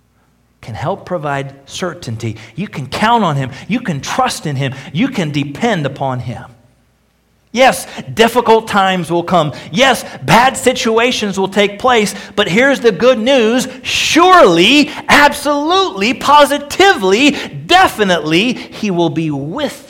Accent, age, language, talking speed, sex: American, 50-69, English, 130 wpm, male